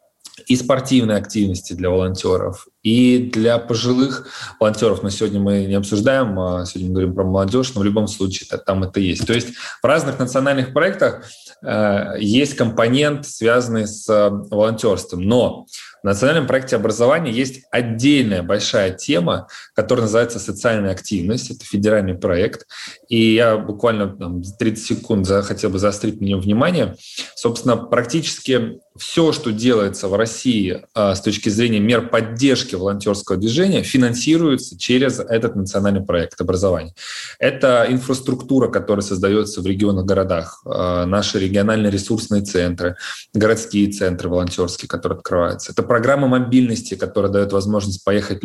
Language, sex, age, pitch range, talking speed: Russian, male, 20-39, 95-115 Hz, 135 wpm